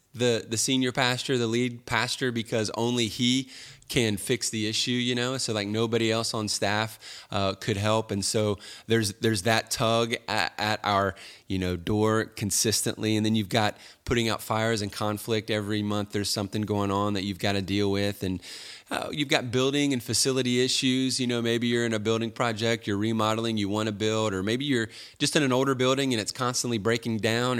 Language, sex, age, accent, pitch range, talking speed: English, male, 30-49, American, 105-125 Hz, 205 wpm